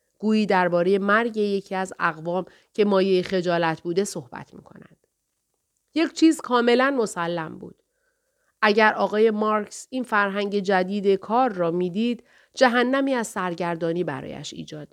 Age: 30-49